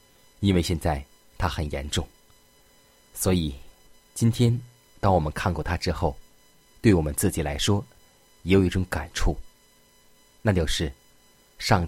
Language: Chinese